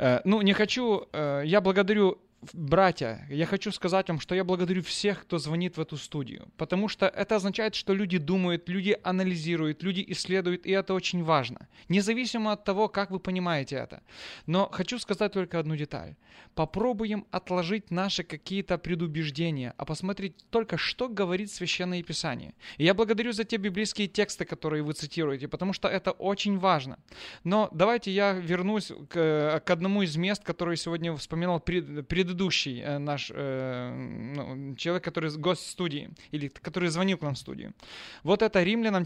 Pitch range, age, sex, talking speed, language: 160-200 Hz, 20-39, male, 165 wpm, Russian